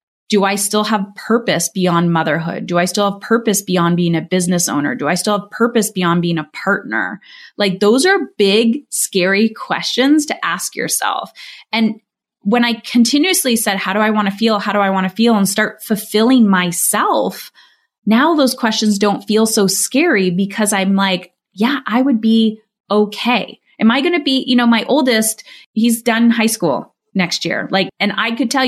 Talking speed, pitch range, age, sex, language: 190 wpm, 195-250 Hz, 20-39, female, English